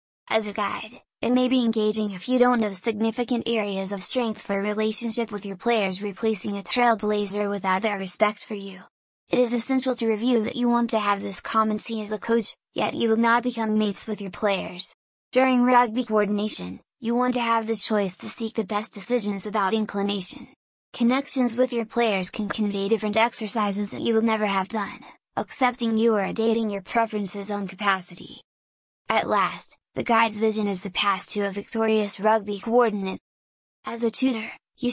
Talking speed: 185 wpm